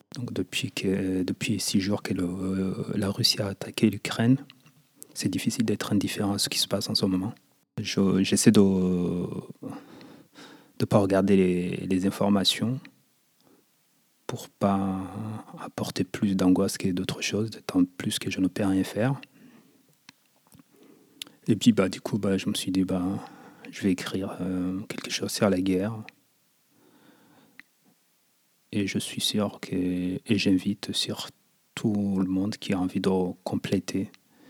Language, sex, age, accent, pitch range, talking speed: French, male, 30-49, French, 95-110 Hz, 150 wpm